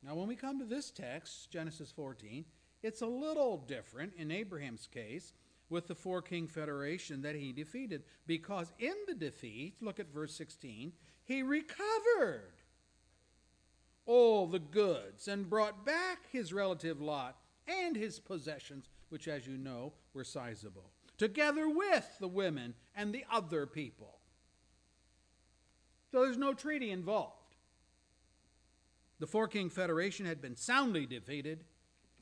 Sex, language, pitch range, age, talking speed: male, English, 120-205 Hz, 50-69, 135 wpm